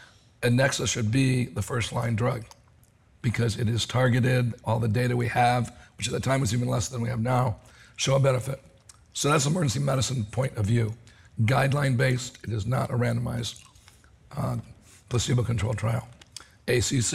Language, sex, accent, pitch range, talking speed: English, male, American, 115-130 Hz, 165 wpm